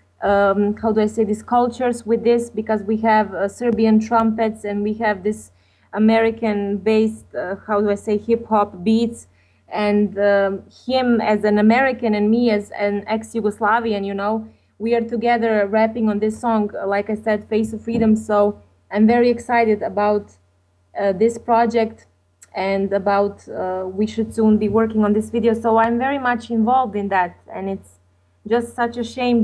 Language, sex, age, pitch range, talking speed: English, female, 20-39, 200-235 Hz, 170 wpm